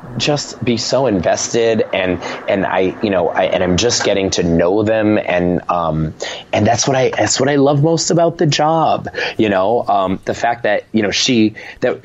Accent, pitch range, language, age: American, 95-135 Hz, English, 30-49